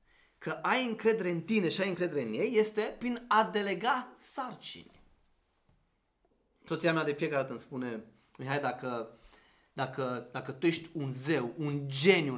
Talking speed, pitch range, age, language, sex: 150 wpm, 125-185 Hz, 30-49, Romanian, male